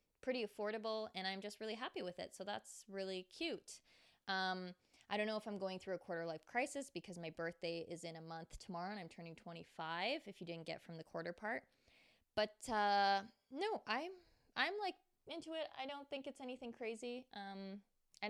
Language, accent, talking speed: English, American, 200 wpm